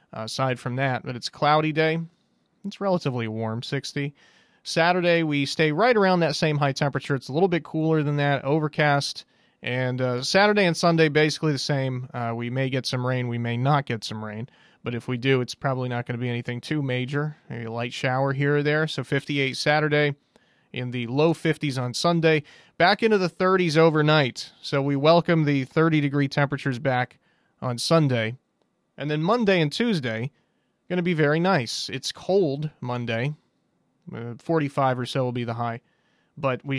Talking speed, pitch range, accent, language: 185 wpm, 125-160 Hz, American, English